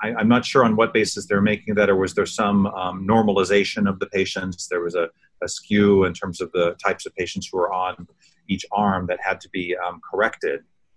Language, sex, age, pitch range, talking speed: English, male, 30-49, 90-105 Hz, 225 wpm